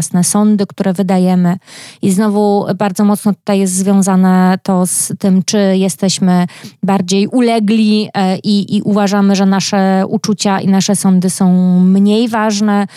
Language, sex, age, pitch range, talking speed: Polish, female, 20-39, 185-215 Hz, 135 wpm